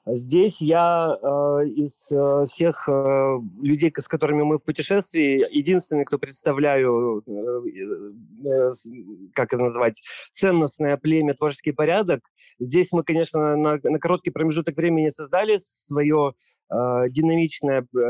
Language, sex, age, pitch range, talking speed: Russian, male, 30-49, 135-160 Hz, 120 wpm